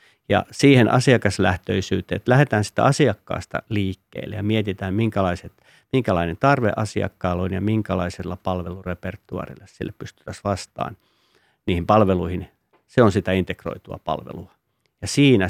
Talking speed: 115 wpm